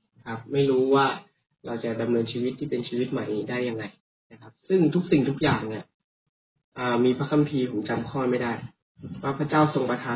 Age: 20-39